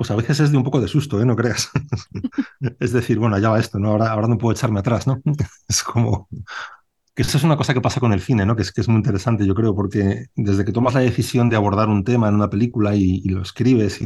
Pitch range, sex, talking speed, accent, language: 100-115 Hz, male, 280 wpm, Spanish, Spanish